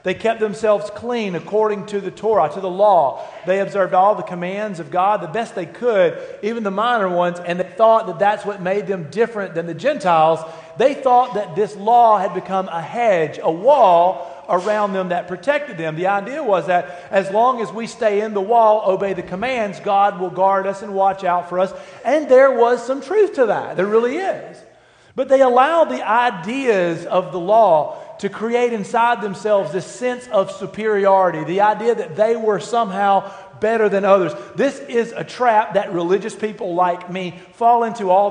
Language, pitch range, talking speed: English, 185-230 Hz, 195 wpm